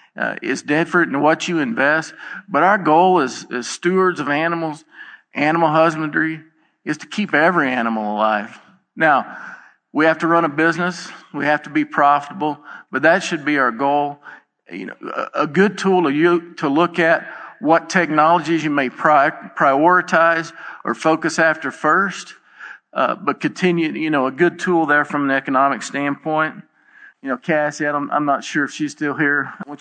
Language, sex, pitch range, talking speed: English, male, 145-170 Hz, 175 wpm